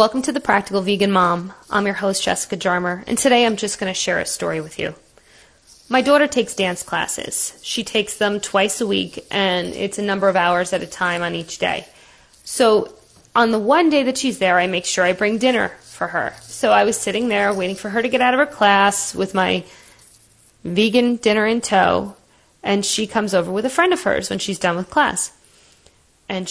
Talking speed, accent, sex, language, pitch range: 215 wpm, American, female, English, 180-240 Hz